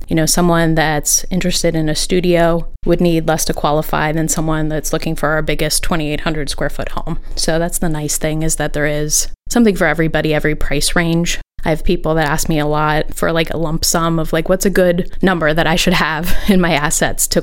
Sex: female